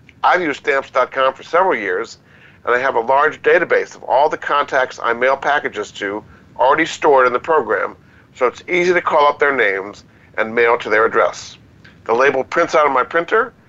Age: 50-69